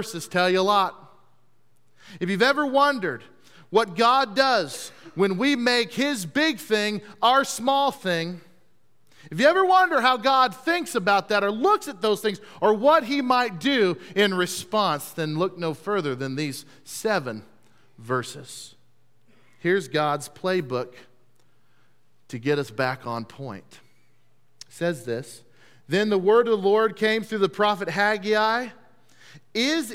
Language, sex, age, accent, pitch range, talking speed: English, male, 40-59, American, 145-225 Hz, 145 wpm